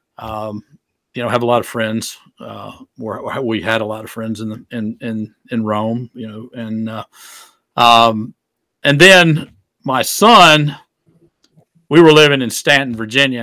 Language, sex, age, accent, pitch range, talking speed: English, male, 50-69, American, 105-120 Hz, 160 wpm